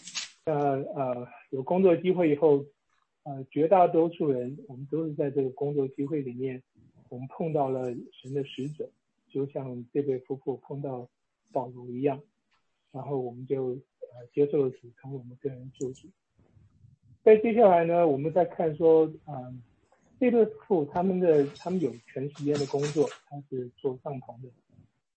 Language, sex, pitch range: English, male, 130-160 Hz